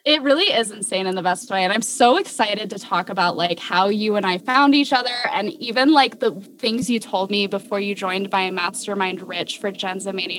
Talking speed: 235 wpm